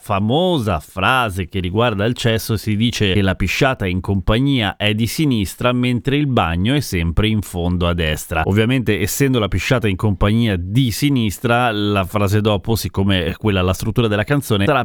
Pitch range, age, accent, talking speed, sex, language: 100-130 Hz, 30-49, native, 180 wpm, male, Italian